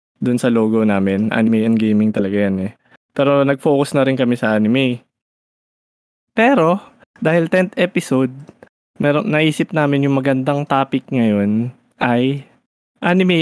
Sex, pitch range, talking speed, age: male, 125-160 Hz, 135 wpm, 20-39